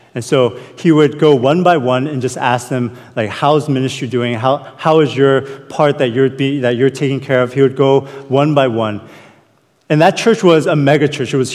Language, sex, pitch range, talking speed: English, male, 135-175 Hz, 235 wpm